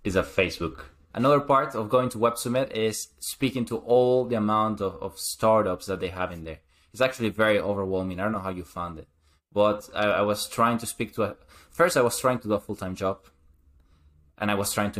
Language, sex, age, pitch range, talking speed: English, male, 20-39, 85-110 Hz, 230 wpm